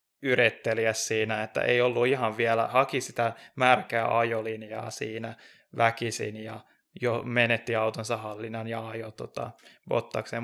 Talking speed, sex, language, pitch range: 125 wpm, male, Finnish, 110-125 Hz